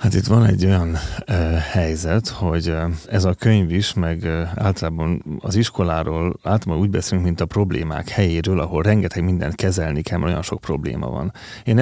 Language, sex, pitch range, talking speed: Hungarian, male, 85-110 Hz, 180 wpm